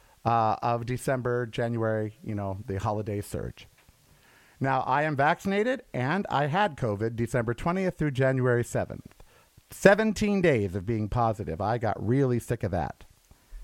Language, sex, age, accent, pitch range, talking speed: English, male, 50-69, American, 120-185 Hz, 145 wpm